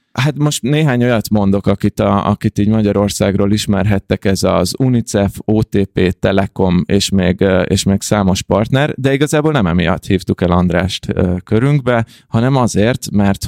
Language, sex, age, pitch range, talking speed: Hungarian, male, 20-39, 95-110 Hz, 145 wpm